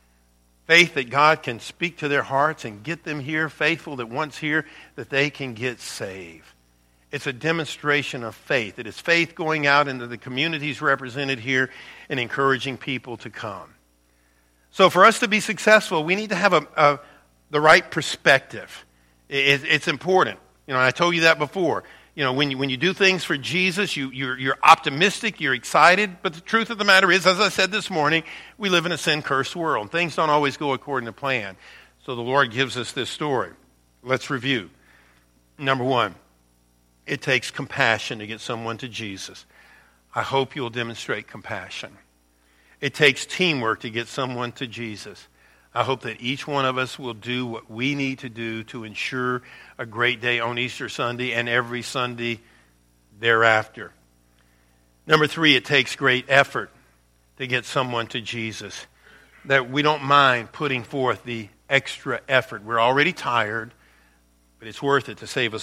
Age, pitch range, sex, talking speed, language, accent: 50-69, 110-150 Hz, male, 180 wpm, English, American